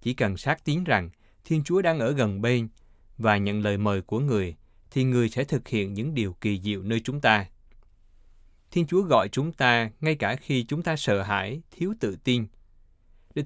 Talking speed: 200 wpm